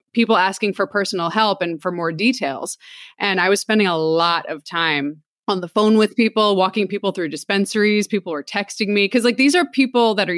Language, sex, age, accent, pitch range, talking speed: English, female, 20-39, American, 180-215 Hz, 215 wpm